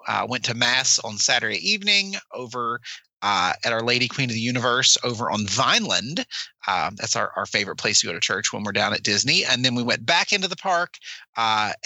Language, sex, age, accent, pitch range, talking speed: English, male, 30-49, American, 120-165 Hz, 220 wpm